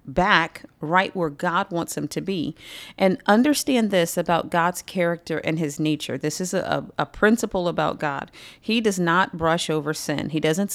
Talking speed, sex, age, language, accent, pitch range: 180 wpm, female, 40-59, English, American, 160-215 Hz